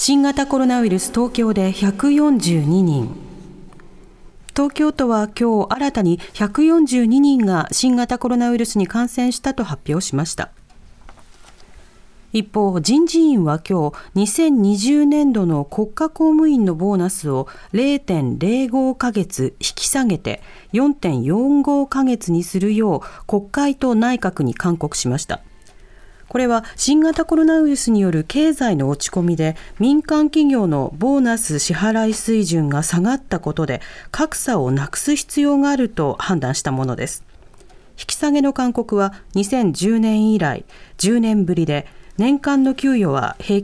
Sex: female